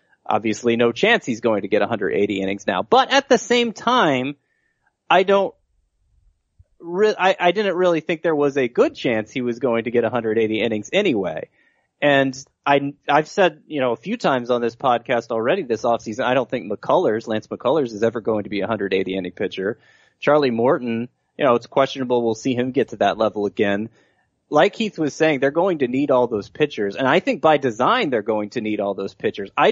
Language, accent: English, American